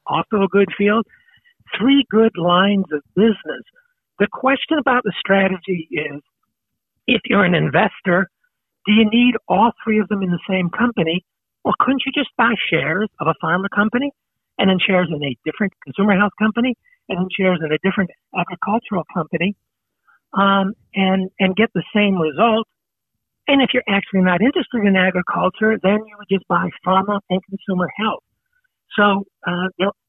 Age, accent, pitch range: 60-79, American, 175-225 Hz